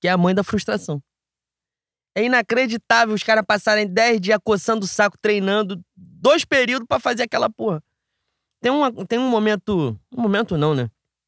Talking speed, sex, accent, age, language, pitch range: 170 wpm, male, Brazilian, 20-39, Portuguese, 155-225 Hz